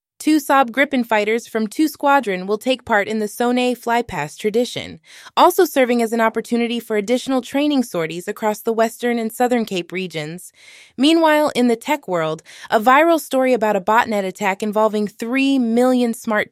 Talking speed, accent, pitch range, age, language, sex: 170 wpm, American, 210-265 Hz, 20-39, English, female